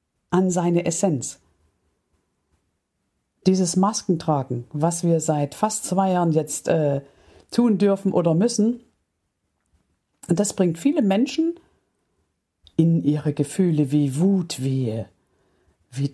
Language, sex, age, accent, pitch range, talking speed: German, female, 50-69, German, 160-230 Hz, 105 wpm